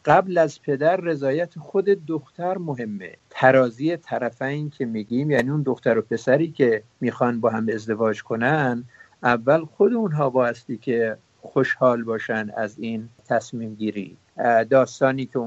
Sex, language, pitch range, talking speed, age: male, English, 120-160 Hz, 135 wpm, 50-69